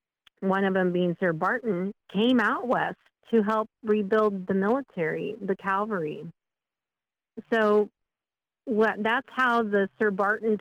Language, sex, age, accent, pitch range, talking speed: English, female, 40-59, American, 180-210 Hz, 130 wpm